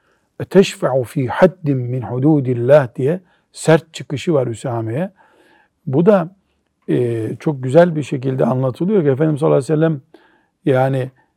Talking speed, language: 125 wpm, Turkish